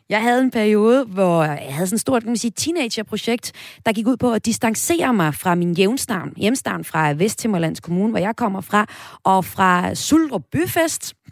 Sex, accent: female, native